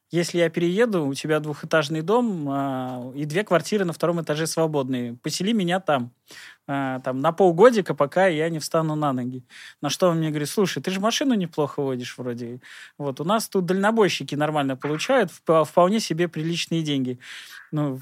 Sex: male